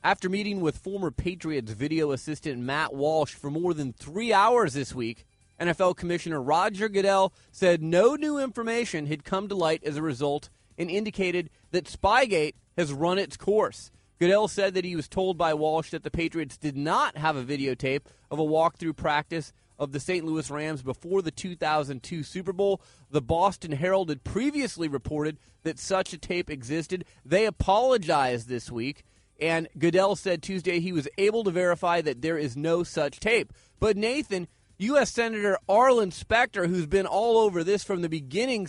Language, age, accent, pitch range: English, 30-49, American, 150-190 Hz